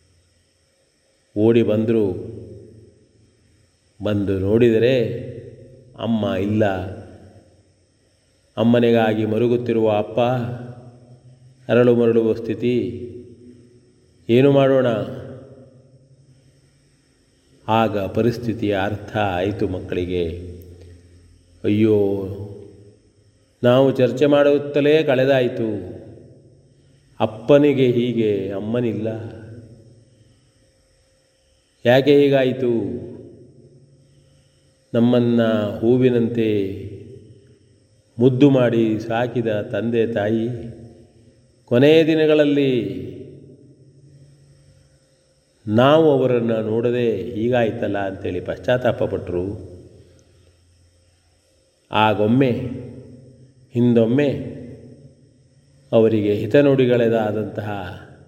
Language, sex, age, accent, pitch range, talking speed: Kannada, male, 30-49, native, 105-130 Hz, 50 wpm